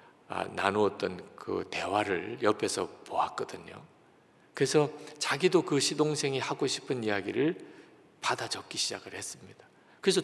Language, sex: Korean, male